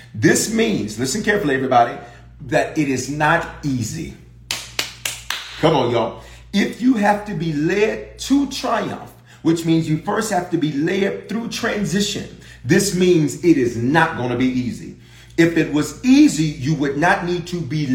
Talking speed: 165 wpm